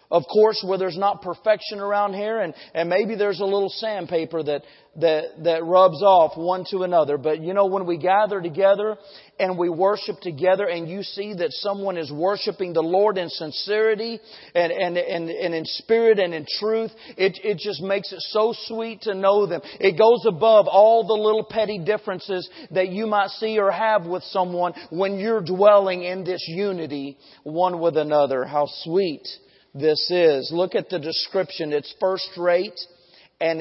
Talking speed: 180 wpm